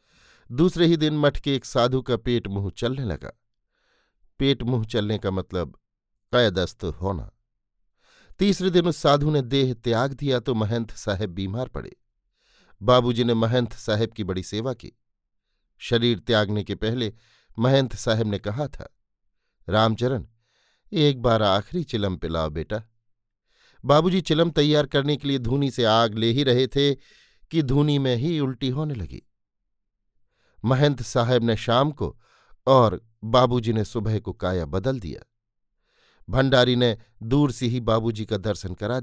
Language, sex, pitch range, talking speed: Hindi, male, 105-130 Hz, 150 wpm